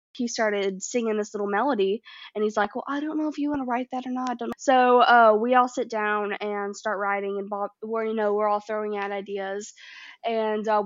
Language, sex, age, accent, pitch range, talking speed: English, female, 10-29, American, 195-225 Hz, 245 wpm